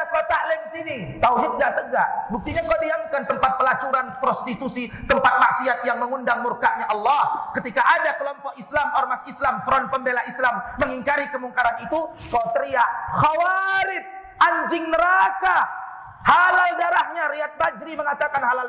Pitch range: 220-320 Hz